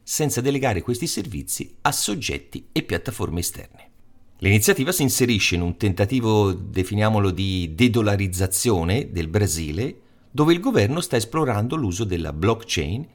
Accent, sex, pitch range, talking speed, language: native, male, 85-120 Hz, 130 wpm, Italian